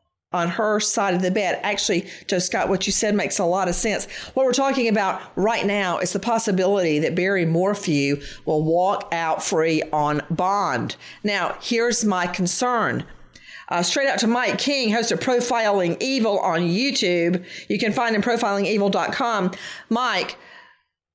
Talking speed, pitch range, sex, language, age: 160 wpm, 180-235 Hz, female, English, 50-69